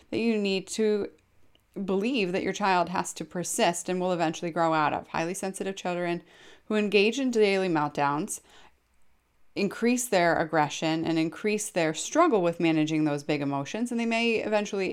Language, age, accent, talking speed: English, 30-49, American, 165 wpm